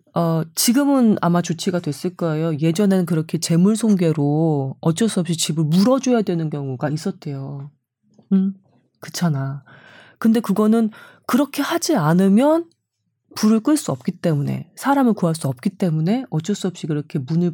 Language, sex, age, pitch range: Korean, female, 30-49, 155-225 Hz